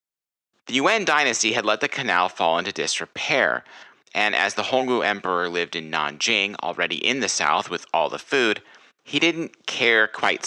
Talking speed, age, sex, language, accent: 170 wpm, 30-49, male, English, American